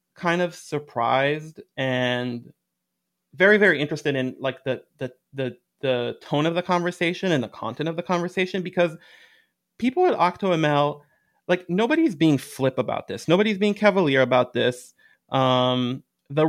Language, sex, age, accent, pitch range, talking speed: English, male, 30-49, American, 125-175 Hz, 145 wpm